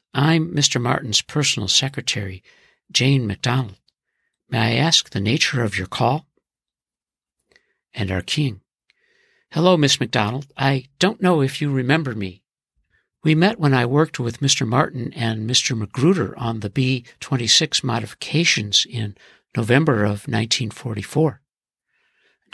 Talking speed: 125 wpm